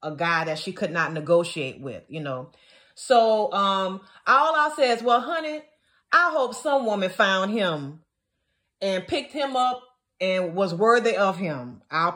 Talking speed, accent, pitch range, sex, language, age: 170 wpm, American, 195-320 Hz, female, English, 30-49